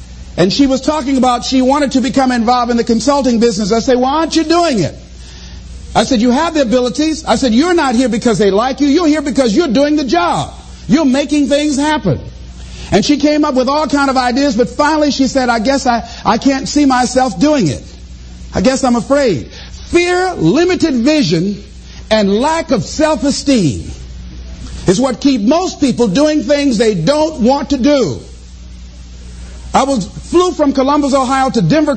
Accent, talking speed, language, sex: American, 190 wpm, English, male